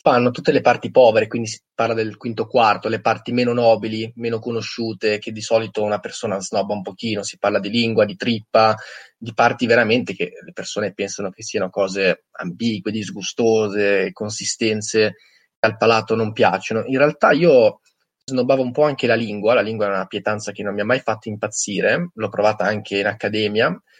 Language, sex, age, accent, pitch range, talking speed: Italian, male, 20-39, native, 105-125 Hz, 190 wpm